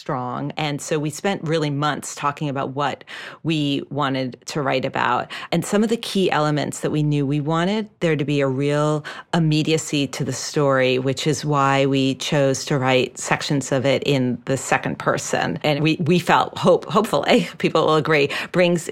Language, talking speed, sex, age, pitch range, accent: English, 185 wpm, female, 40-59, 140-165 Hz, American